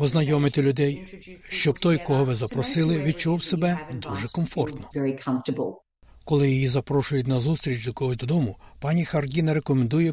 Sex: male